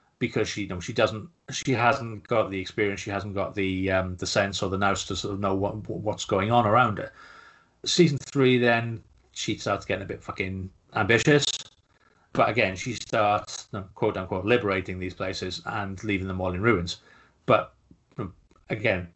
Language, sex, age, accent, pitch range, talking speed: English, male, 30-49, British, 100-120 Hz, 185 wpm